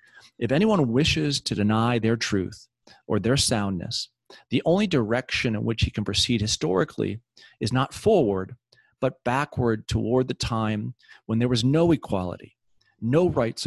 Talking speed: 150 wpm